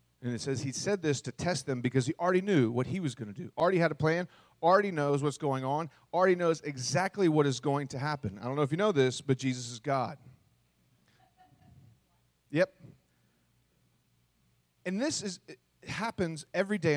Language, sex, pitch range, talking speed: English, male, 130-175 Hz, 195 wpm